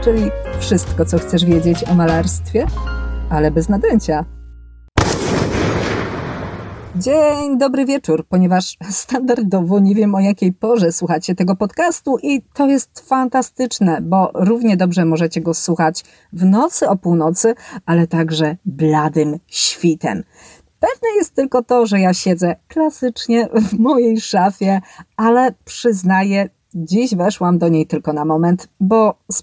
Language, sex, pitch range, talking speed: Polish, female, 165-220 Hz, 130 wpm